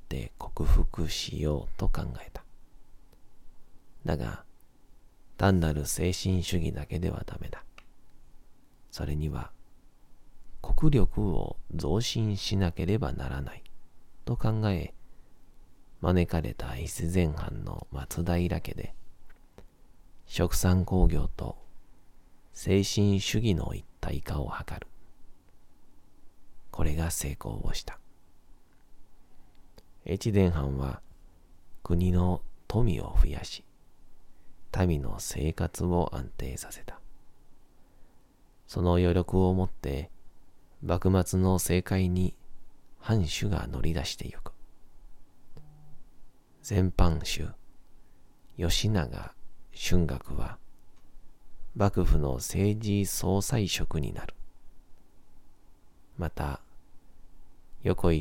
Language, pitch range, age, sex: Japanese, 75-95 Hz, 40-59, male